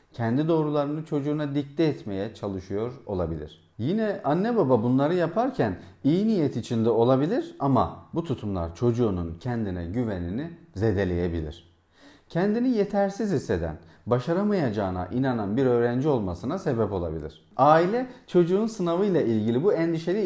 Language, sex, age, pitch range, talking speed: Turkish, male, 40-59, 100-160 Hz, 115 wpm